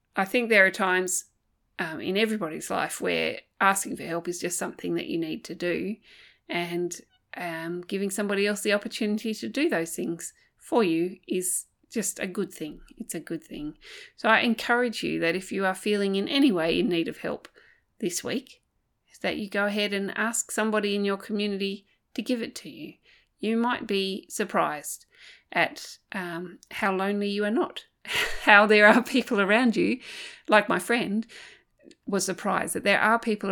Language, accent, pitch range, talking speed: English, Australian, 180-245 Hz, 185 wpm